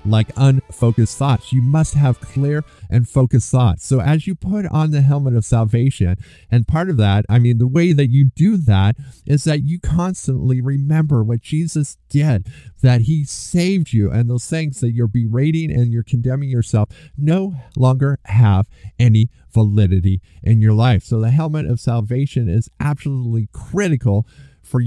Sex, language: male, English